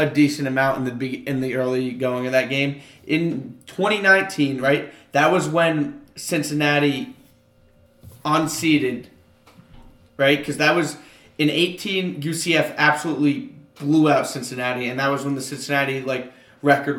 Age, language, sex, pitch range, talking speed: 30-49, English, male, 130-150 Hz, 140 wpm